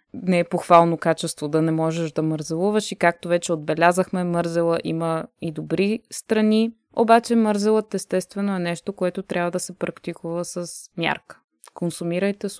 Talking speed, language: 150 wpm, Bulgarian